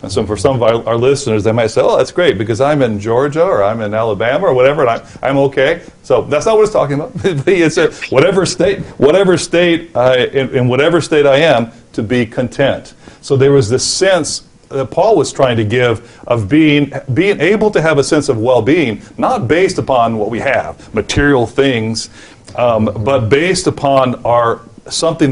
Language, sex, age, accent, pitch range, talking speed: English, male, 40-59, American, 115-140 Hz, 195 wpm